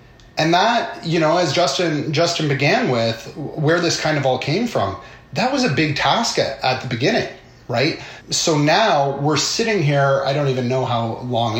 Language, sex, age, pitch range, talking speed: English, male, 30-49, 130-155 Hz, 190 wpm